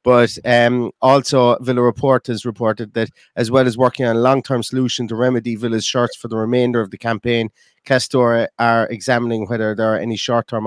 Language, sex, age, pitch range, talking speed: English, male, 30-49, 105-120 Hz, 190 wpm